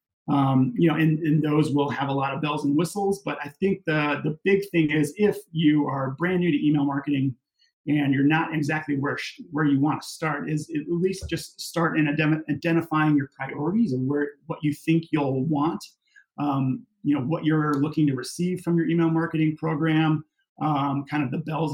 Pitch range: 140-160 Hz